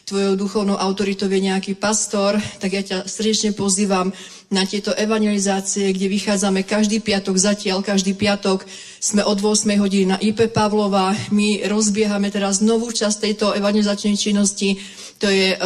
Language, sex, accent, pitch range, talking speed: Czech, female, native, 200-215 Hz, 140 wpm